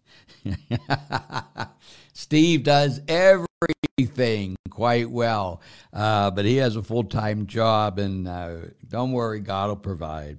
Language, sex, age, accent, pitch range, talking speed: English, male, 60-79, American, 85-120 Hz, 105 wpm